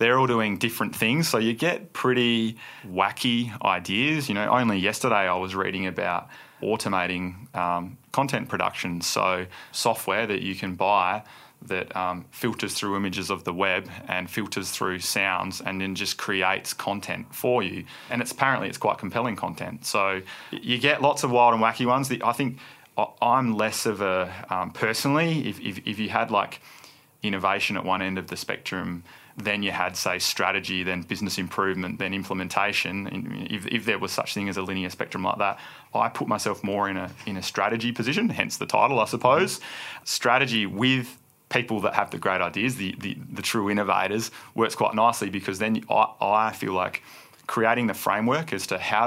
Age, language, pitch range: 20-39, English, 95-120 Hz